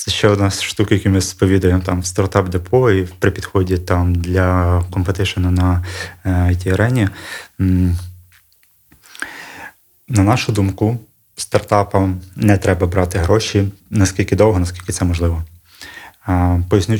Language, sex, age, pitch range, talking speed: Ukrainian, male, 20-39, 90-100 Hz, 110 wpm